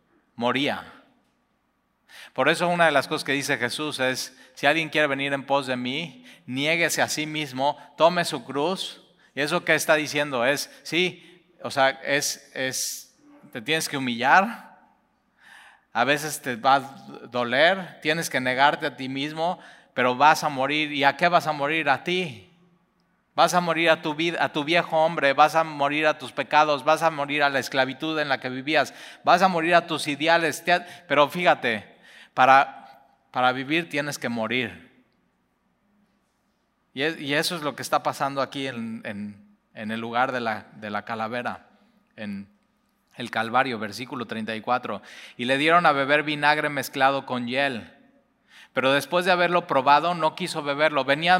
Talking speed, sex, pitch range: 165 wpm, male, 135-165 Hz